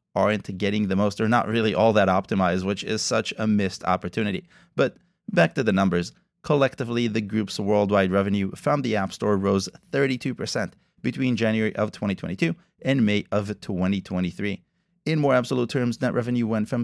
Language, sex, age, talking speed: English, male, 30-49, 170 wpm